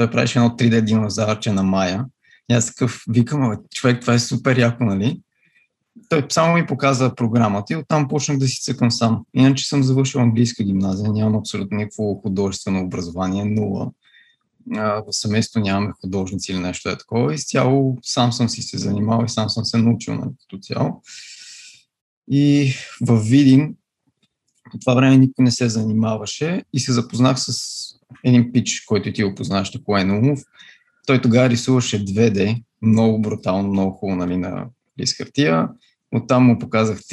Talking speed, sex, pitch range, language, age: 155 wpm, male, 105-130 Hz, Bulgarian, 20-39